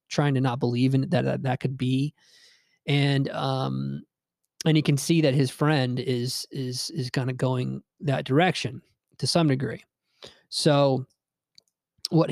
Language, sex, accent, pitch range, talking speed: English, male, American, 130-150 Hz, 160 wpm